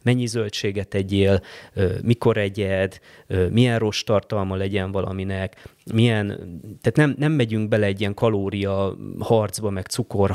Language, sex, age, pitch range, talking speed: Hungarian, male, 20-39, 95-115 Hz, 130 wpm